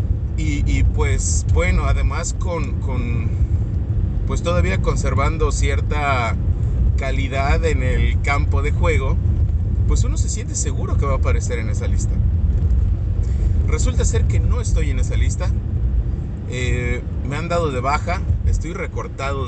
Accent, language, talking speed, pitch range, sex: Mexican, English, 140 wpm, 90-120 Hz, male